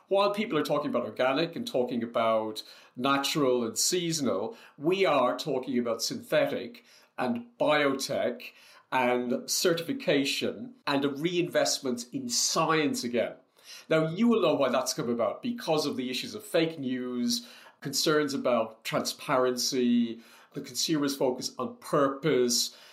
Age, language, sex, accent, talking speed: 40-59, English, male, British, 130 wpm